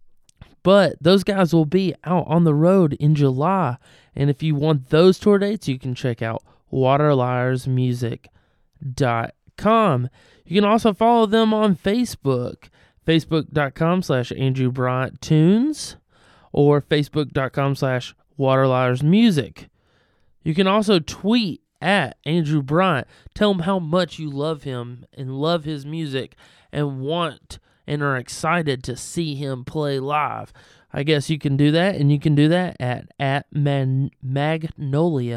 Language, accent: English, American